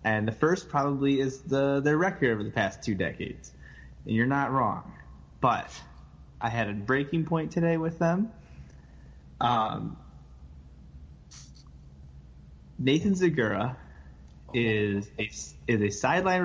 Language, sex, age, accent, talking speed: English, male, 20-39, American, 125 wpm